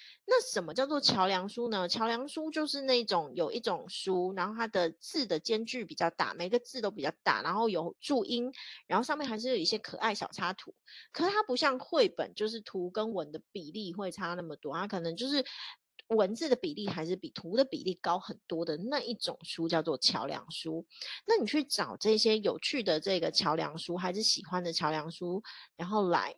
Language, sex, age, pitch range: Chinese, female, 30-49, 175-280 Hz